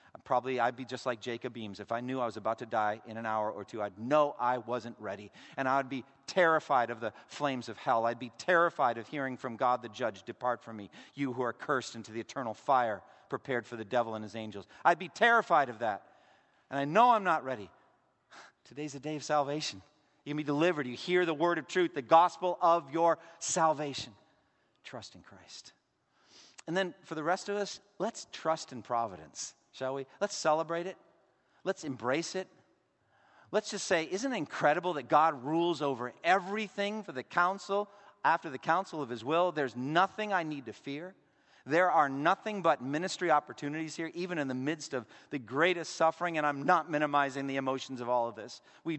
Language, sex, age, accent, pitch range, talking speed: English, male, 40-59, American, 125-170 Hz, 205 wpm